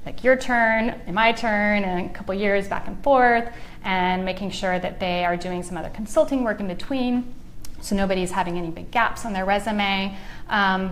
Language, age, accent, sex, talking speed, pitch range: English, 30-49, American, female, 200 wpm, 180-220 Hz